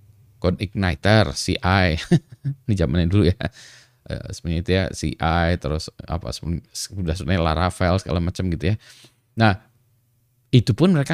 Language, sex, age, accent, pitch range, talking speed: Indonesian, male, 20-39, native, 90-120 Hz, 120 wpm